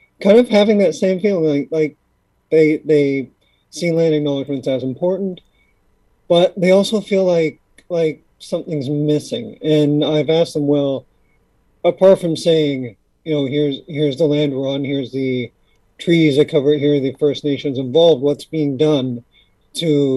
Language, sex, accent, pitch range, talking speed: English, male, American, 140-160 Hz, 160 wpm